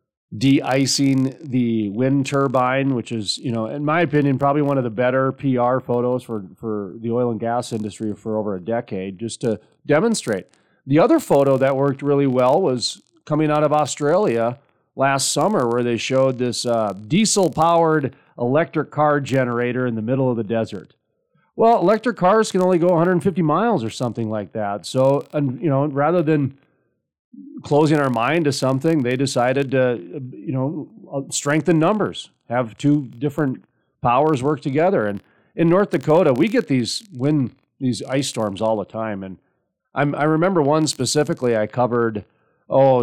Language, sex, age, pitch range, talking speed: English, male, 40-59, 120-150 Hz, 165 wpm